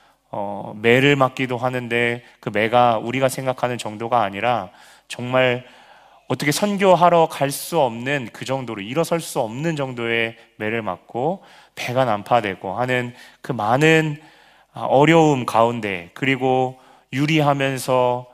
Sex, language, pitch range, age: male, Korean, 110-145 Hz, 30-49